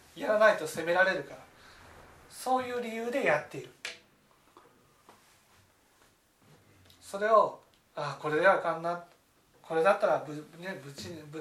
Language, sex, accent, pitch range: Japanese, male, native, 150-205 Hz